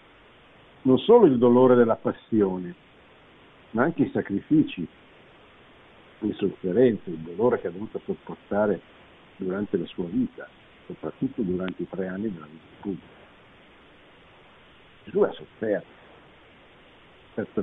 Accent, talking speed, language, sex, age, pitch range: native, 120 wpm, Italian, male, 60-79, 90-115 Hz